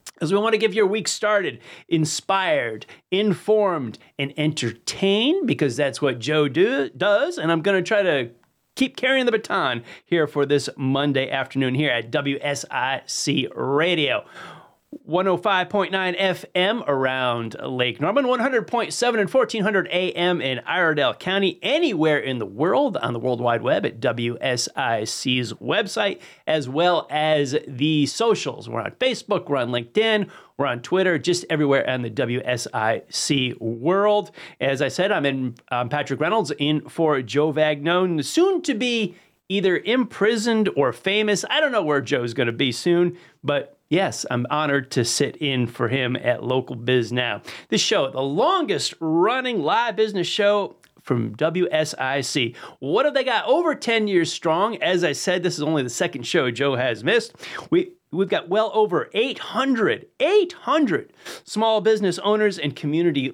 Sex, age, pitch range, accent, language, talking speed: male, 30-49, 140-210 Hz, American, English, 155 wpm